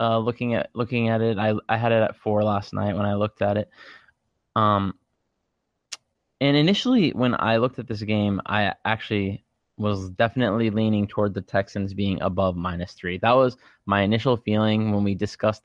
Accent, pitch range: American, 100-125 Hz